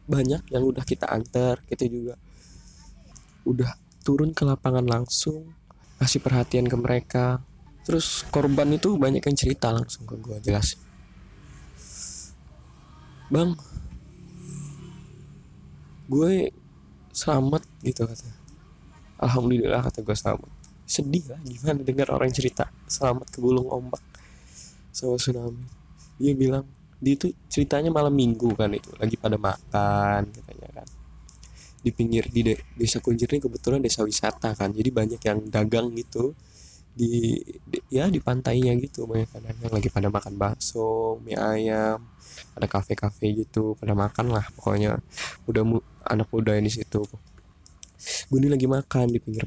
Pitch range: 105-130 Hz